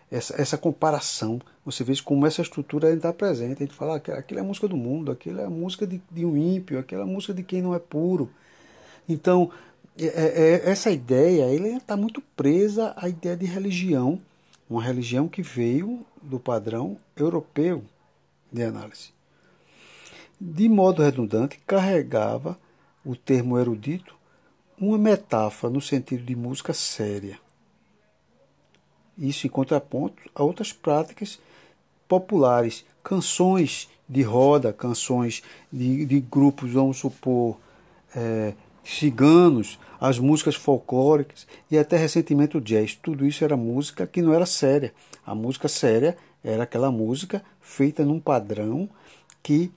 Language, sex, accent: Portuguese, male, Brazilian